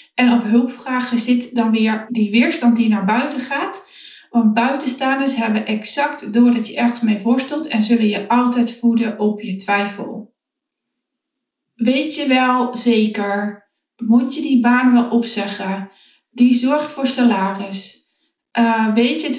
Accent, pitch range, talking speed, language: Dutch, 225-260 Hz, 145 wpm, Dutch